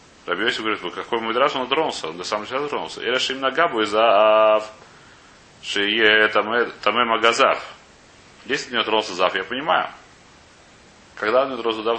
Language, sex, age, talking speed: Russian, male, 30-49, 165 wpm